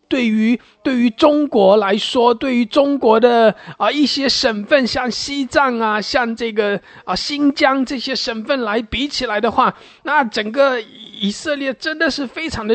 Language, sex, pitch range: English, male, 200-275 Hz